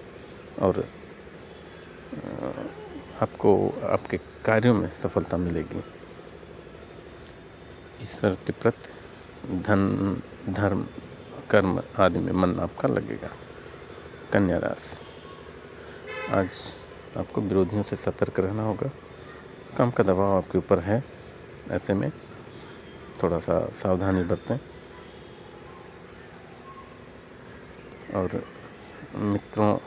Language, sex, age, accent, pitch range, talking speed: Hindi, male, 50-69, native, 95-110 Hz, 80 wpm